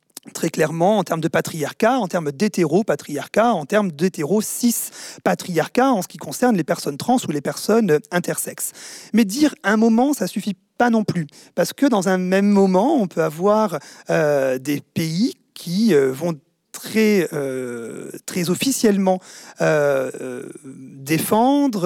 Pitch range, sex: 160-230 Hz, male